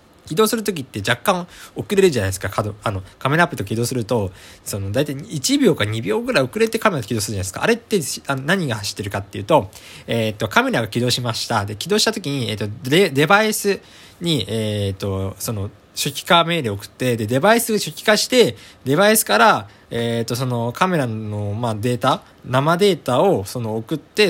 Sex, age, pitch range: male, 20-39, 105-170 Hz